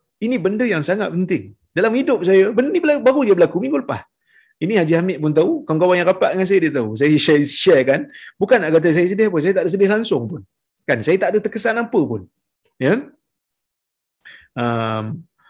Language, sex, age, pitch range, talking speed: Malayalam, male, 30-49, 145-215 Hz, 200 wpm